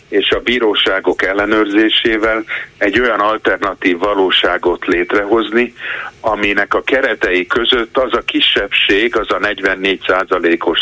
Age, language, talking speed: 50-69, Hungarian, 105 wpm